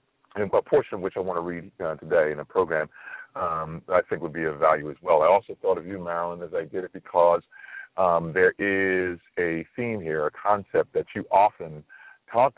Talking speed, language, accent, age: 220 wpm, English, American, 40-59